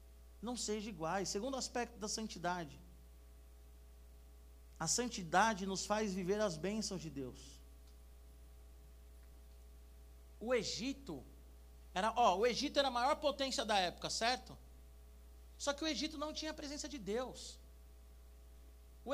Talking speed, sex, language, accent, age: 125 wpm, male, Portuguese, Brazilian, 50-69